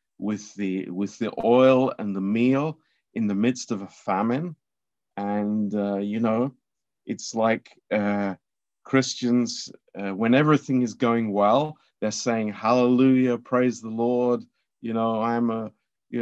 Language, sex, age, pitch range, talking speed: Romanian, male, 50-69, 95-120 Hz, 145 wpm